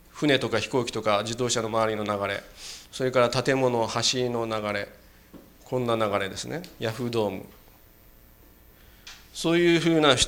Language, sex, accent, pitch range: Japanese, male, native, 110-135 Hz